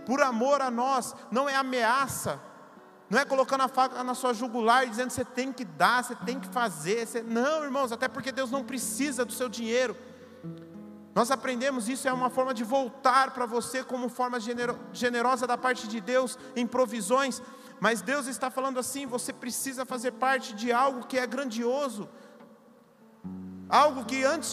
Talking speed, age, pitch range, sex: 175 wpm, 40-59, 245-275 Hz, male